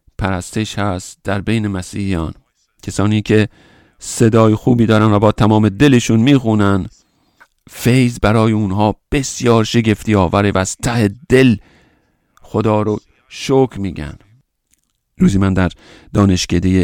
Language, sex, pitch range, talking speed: English, male, 100-115 Hz, 120 wpm